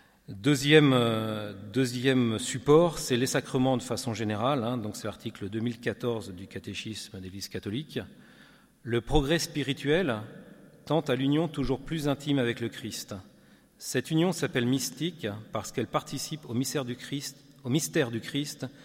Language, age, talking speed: French, 40-59, 130 wpm